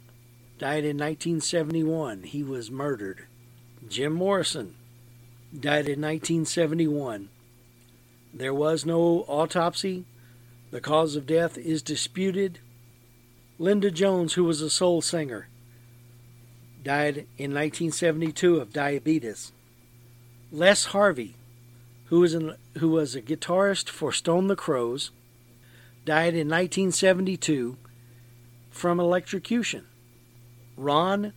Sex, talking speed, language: male, 95 wpm, English